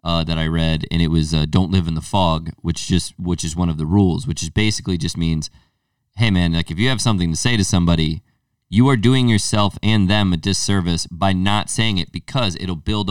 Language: English